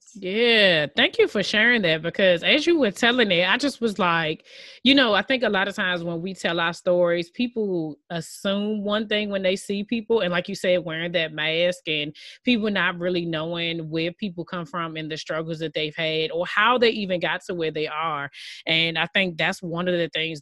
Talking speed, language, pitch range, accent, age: 225 wpm, English, 170-210 Hz, American, 20-39